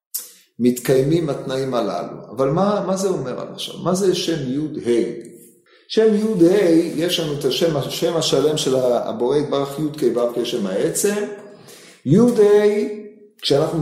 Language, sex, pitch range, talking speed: Hebrew, male, 130-185 Hz, 140 wpm